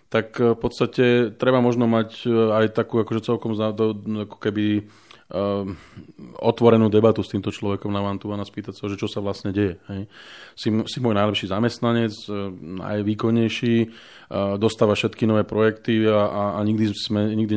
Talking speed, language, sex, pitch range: 155 wpm, Slovak, male, 100-110 Hz